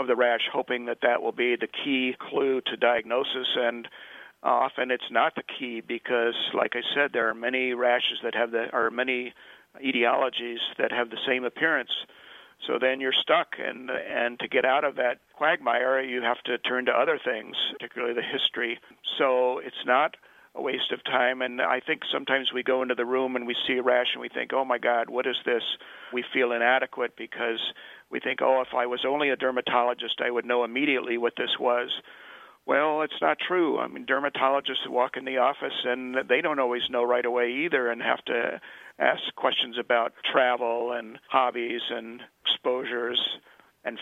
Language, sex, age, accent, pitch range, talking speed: English, male, 50-69, American, 120-130 Hz, 190 wpm